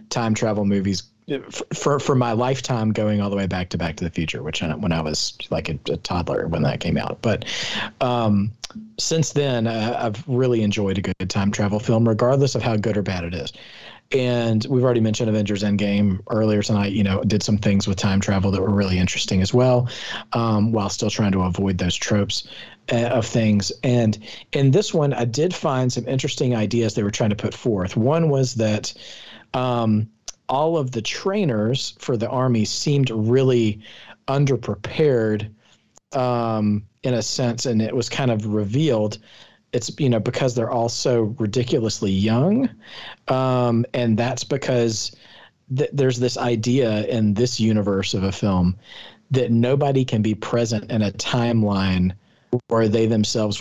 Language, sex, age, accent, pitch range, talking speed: English, male, 40-59, American, 105-125 Hz, 175 wpm